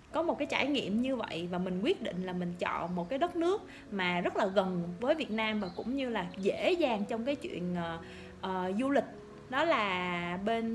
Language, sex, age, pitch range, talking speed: Vietnamese, female, 20-39, 200-295 Hz, 225 wpm